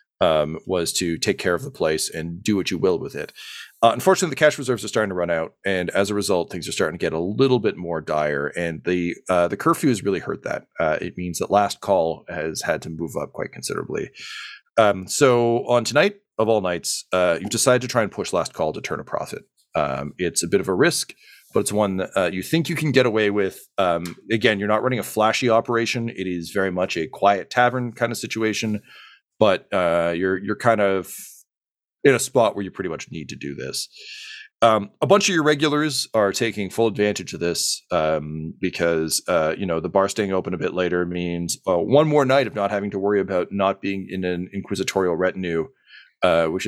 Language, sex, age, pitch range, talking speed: English, male, 40-59, 90-120 Hz, 230 wpm